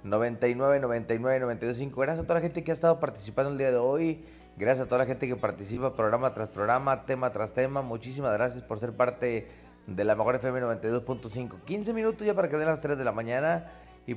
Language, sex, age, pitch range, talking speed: Spanish, male, 30-49, 120-150 Hz, 210 wpm